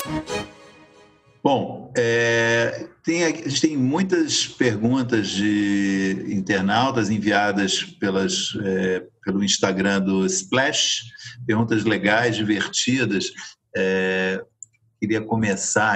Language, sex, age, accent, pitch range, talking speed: Portuguese, male, 50-69, Brazilian, 115-170 Hz, 70 wpm